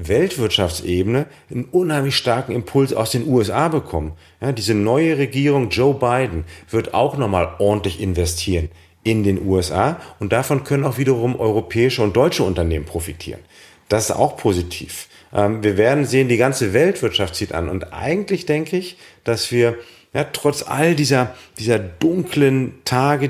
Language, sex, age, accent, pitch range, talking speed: German, male, 40-59, German, 105-140 Hz, 145 wpm